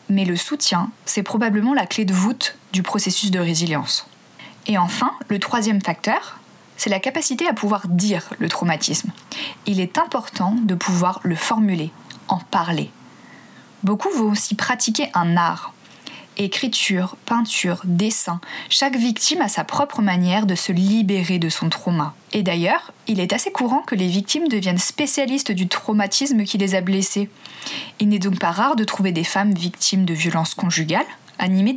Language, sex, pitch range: French, female, 185-235 Hz